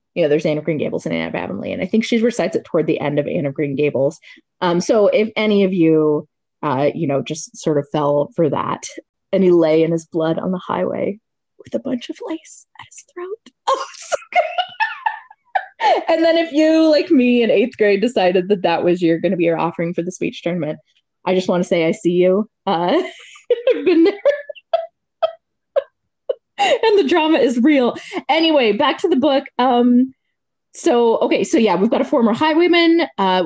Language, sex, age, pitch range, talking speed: English, female, 20-39, 175-280 Hz, 210 wpm